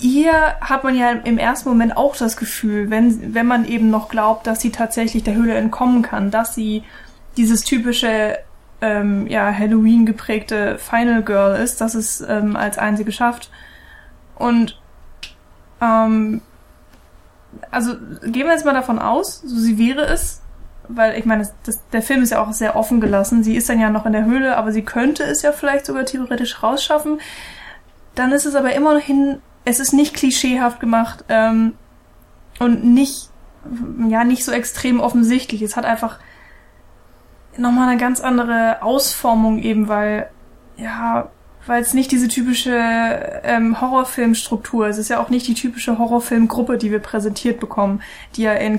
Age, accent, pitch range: 10-29, German, 220-250 Hz